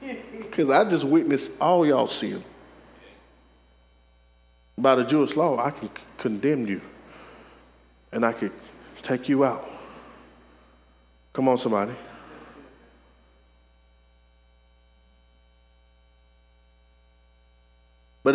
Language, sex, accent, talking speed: English, male, American, 85 wpm